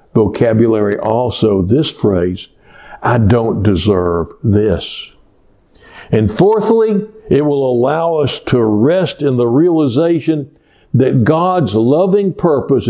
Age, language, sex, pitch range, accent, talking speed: 60-79, English, male, 105-165 Hz, American, 105 wpm